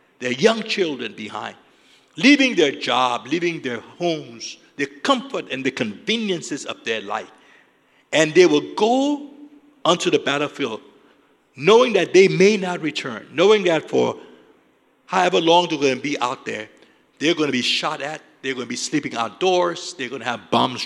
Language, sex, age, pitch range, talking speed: English, male, 60-79, 125-195 Hz, 170 wpm